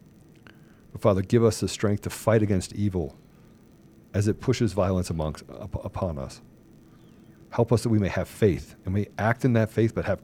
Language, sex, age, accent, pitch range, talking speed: English, male, 40-59, American, 95-115 Hz, 190 wpm